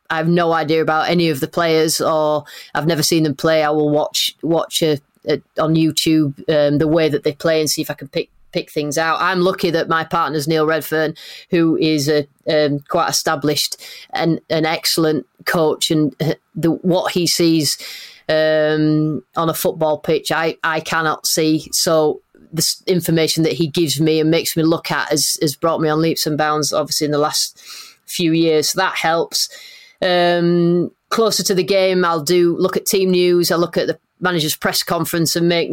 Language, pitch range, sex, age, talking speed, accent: English, 155-175 Hz, female, 30-49, 195 wpm, British